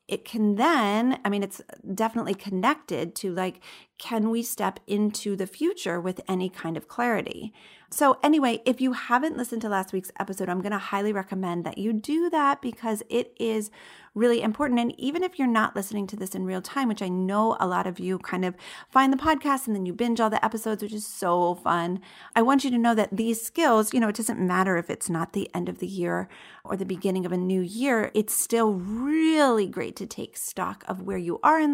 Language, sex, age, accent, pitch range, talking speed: English, female, 30-49, American, 190-260 Hz, 225 wpm